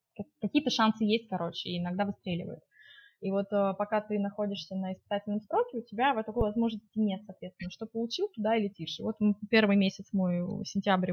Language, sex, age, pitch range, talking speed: Russian, female, 20-39, 185-220 Hz, 185 wpm